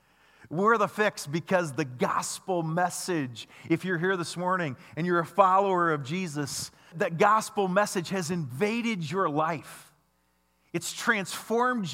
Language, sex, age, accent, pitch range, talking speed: English, male, 40-59, American, 140-185 Hz, 135 wpm